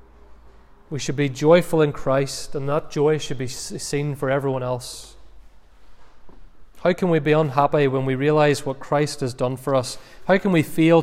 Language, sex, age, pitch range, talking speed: English, male, 30-49, 120-155 Hz, 180 wpm